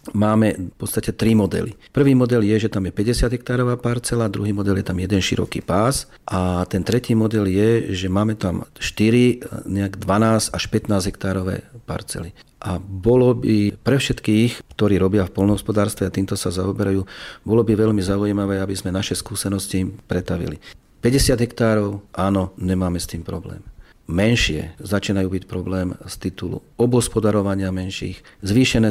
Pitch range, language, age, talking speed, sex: 90-110 Hz, Slovak, 40-59, 150 wpm, male